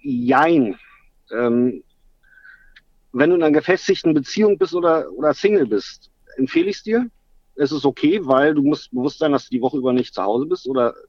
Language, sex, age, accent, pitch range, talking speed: German, male, 50-69, German, 125-160 Hz, 190 wpm